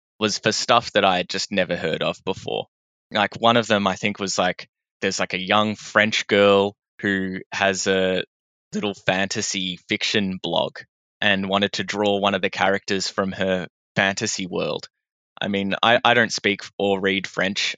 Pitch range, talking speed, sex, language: 95-110 Hz, 180 wpm, male, English